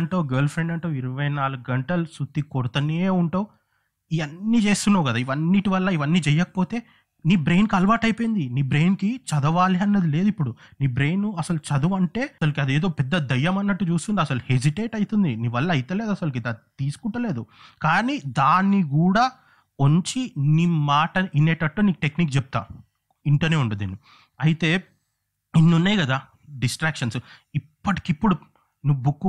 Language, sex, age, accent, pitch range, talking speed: Telugu, male, 30-49, native, 125-170 Hz, 135 wpm